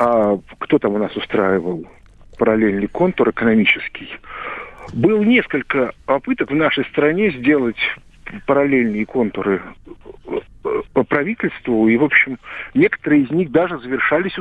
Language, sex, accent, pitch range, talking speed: Russian, male, native, 120-195 Hz, 115 wpm